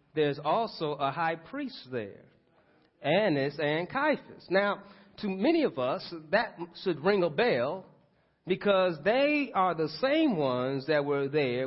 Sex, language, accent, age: male, English, American, 30-49